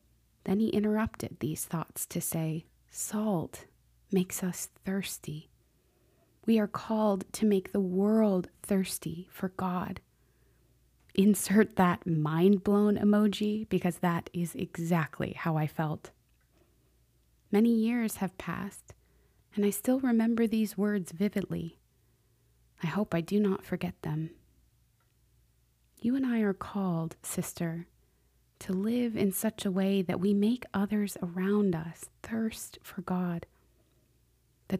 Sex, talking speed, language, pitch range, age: female, 125 wpm, English, 125-200 Hz, 20-39